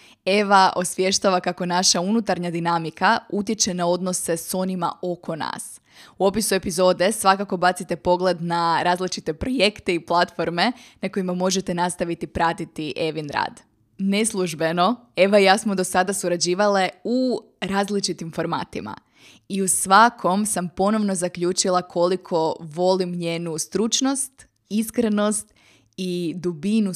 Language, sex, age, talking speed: Croatian, female, 20-39, 120 wpm